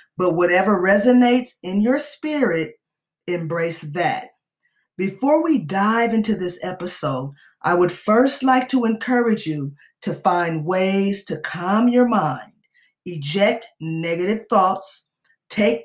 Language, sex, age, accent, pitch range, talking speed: English, female, 40-59, American, 175-230 Hz, 120 wpm